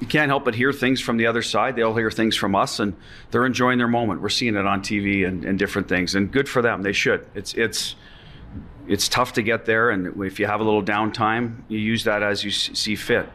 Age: 40-59